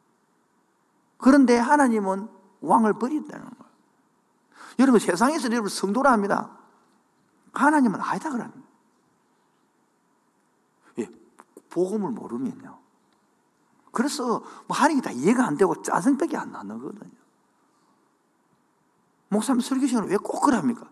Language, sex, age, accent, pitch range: Korean, male, 50-69, native, 225-310 Hz